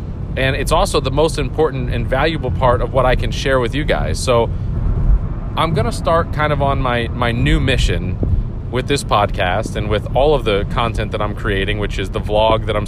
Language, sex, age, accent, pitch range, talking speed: English, male, 40-59, American, 100-130 Hz, 220 wpm